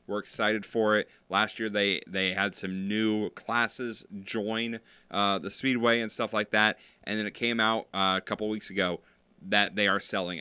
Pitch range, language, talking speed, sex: 95-120 Hz, English, 195 wpm, male